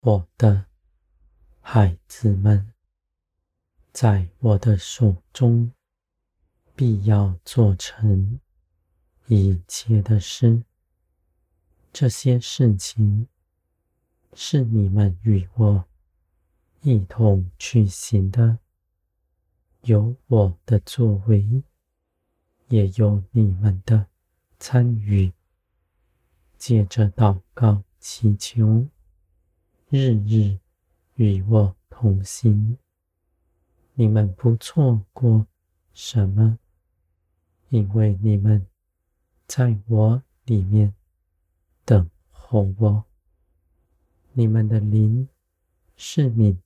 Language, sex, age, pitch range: Chinese, male, 40-59, 85-110 Hz